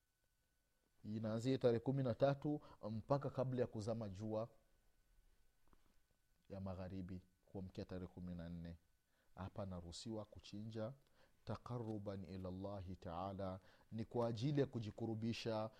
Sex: male